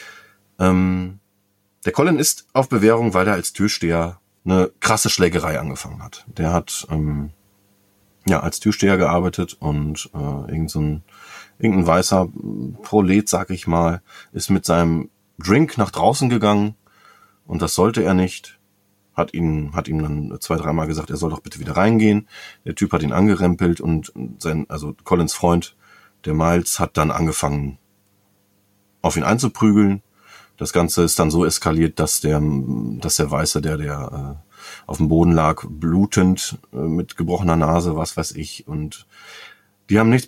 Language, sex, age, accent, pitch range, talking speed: German, male, 30-49, German, 80-100 Hz, 160 wpm